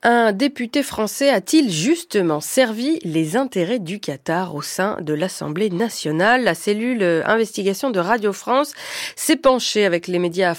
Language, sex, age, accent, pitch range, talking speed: French, female, 30-49, French, 180-260 Hz, 145 wpm